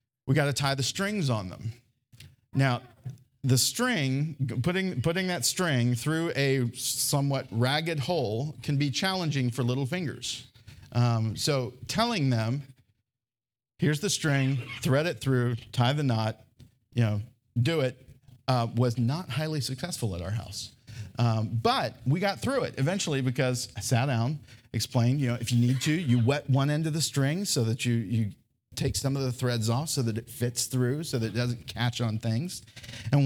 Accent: American